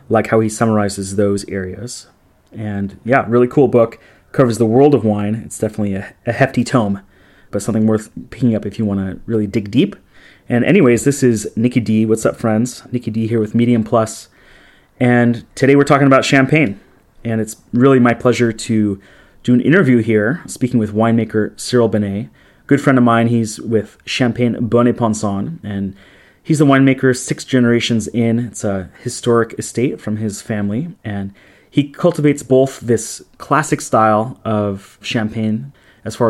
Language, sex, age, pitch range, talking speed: English, male, 30-49, 105-120 Hz, 175 wpm